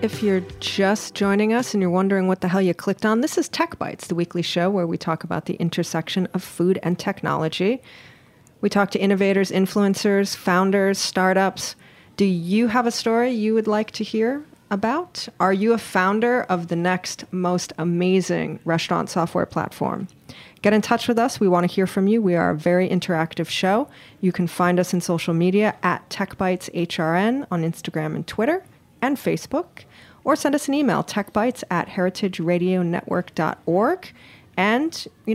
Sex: female